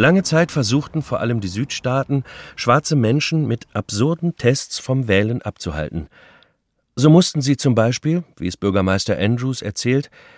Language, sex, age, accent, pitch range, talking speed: German, male, 40-59, German, 95-135 Hz, 145 wpm